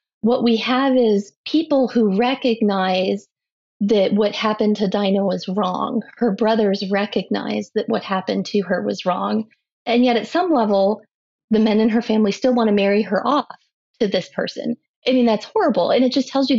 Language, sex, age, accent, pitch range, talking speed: English, female, 30-49, American, 195-235 Hz, 190 wpm